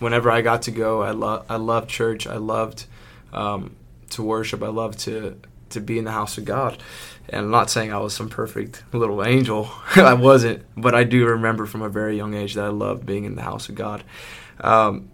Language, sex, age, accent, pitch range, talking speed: English, male, 20-39, American, 100-115 Hz, 220 wpm